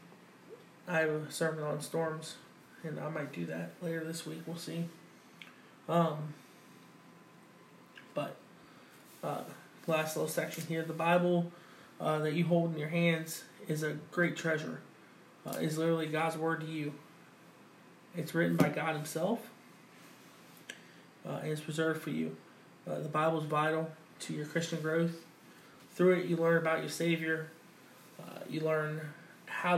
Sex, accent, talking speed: male, American, 155 wpm